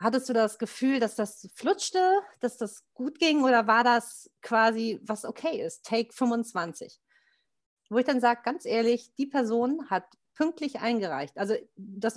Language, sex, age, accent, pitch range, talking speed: German, female, 40-59, German, 180-235 Hz, 165 wpm